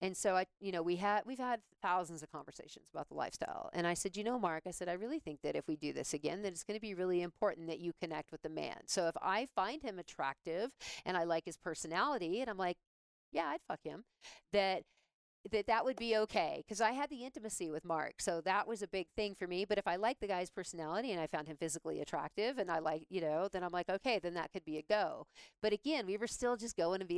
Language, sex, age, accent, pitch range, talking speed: English, female, 40-59, American, 160-200 Hz, 265 wpm